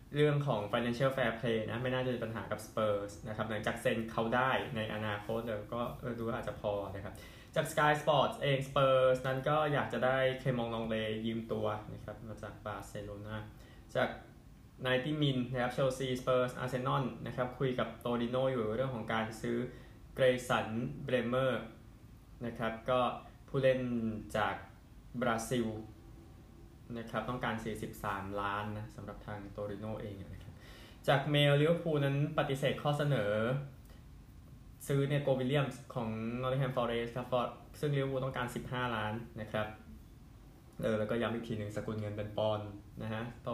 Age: 20-39